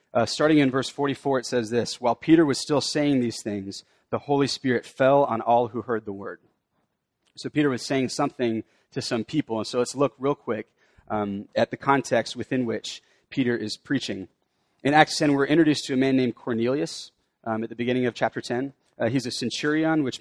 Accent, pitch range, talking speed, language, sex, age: American, 115-140 Hz, 210 wpm, English, male, 30-49